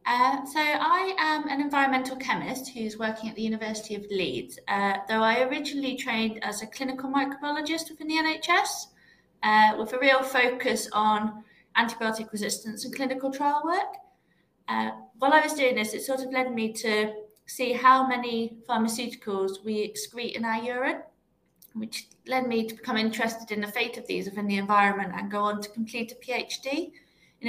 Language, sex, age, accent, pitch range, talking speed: English, female, 20-39, British, 200-255 Hz, 175 wpm